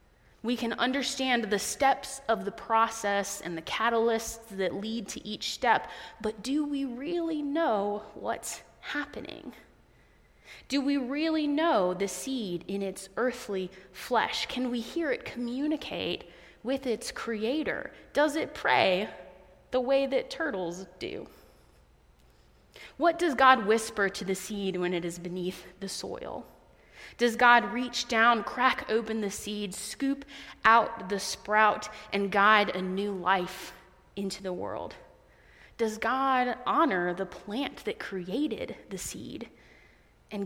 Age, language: 20-39, English